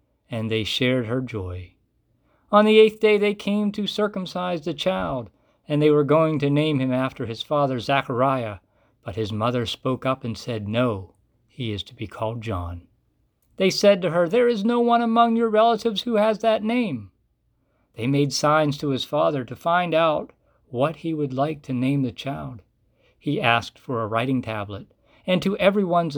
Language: English